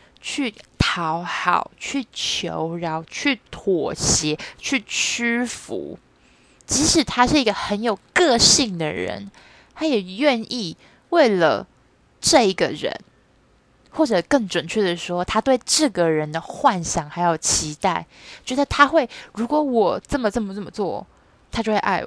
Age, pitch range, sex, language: 20-39, 185-285 Hz, female, Chinese